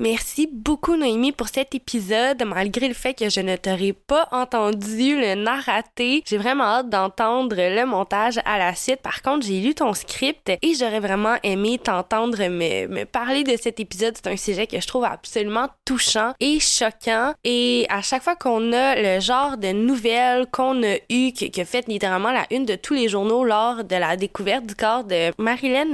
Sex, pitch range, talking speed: female, 200-255 Hz, 195 wpm